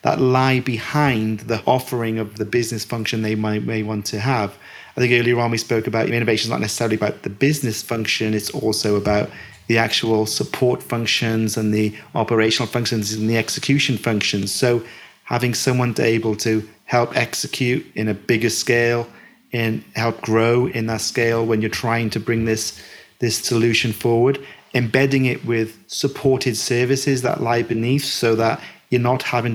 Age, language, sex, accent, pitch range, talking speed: 30-49, English, male, British, 110-125 Hz, 175 wpm